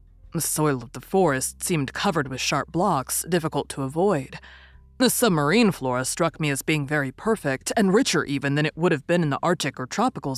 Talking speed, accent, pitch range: 200 wpm, American, 130-170 Hz